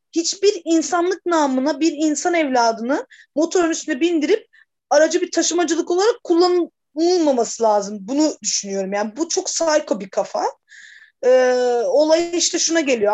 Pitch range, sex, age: 245-345 Hz, female, 30-49